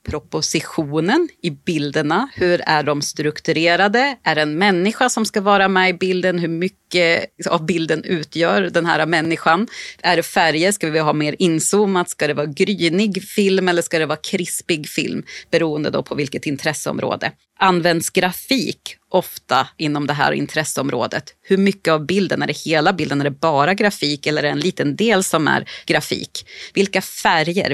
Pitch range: 150-185 Hz